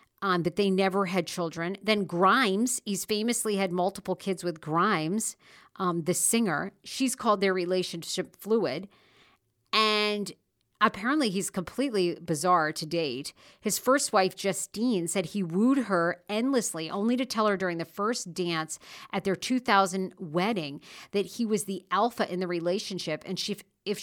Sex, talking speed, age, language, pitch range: female, 155 wpm, 50-69, English, 175-215 Hz